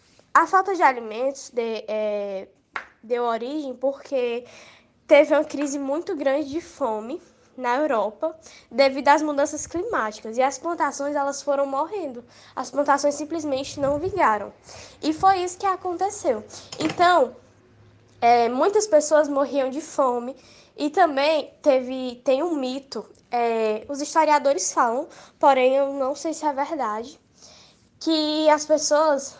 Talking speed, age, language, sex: 120 wpm, 10-29, Portuguese, female